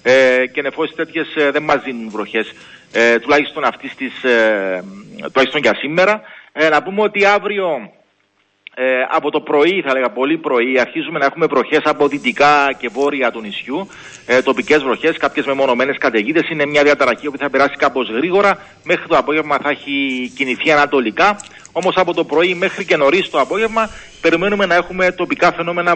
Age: 40-59